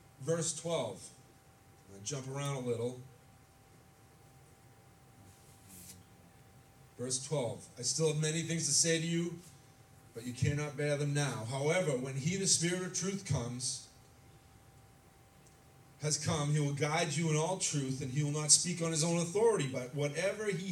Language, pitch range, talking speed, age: English, 130-165 Hz, 155 wpm, 40-59